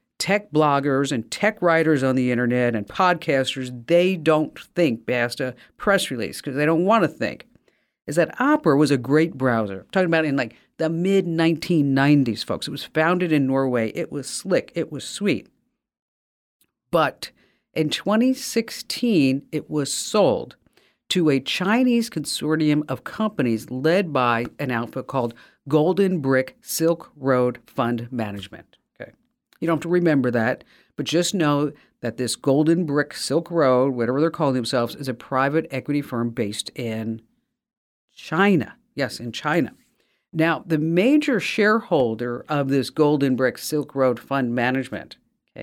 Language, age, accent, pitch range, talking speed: English, 50-69, American, 125-170 Hz, 150 wpm